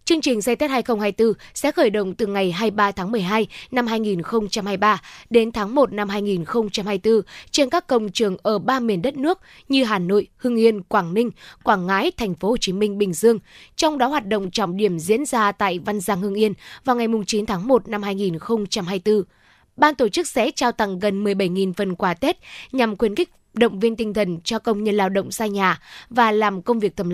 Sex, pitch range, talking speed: female, 200-245 Hz, 210 wpm